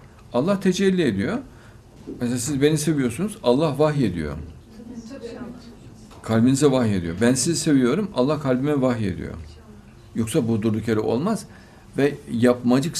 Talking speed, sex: 120 wpm, male